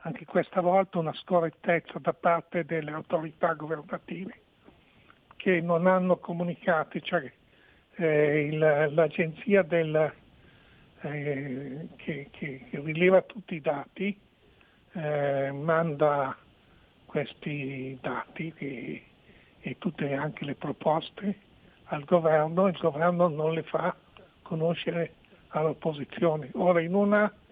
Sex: male